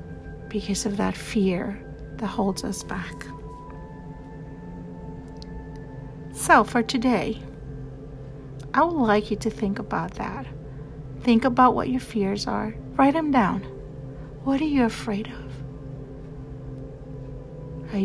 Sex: female